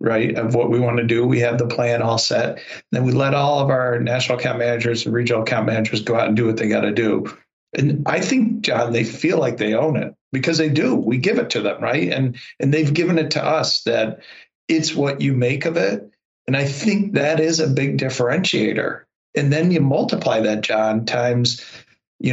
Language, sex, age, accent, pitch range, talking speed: English, male, 40-59, American, 115-140 Hz, 230 wpm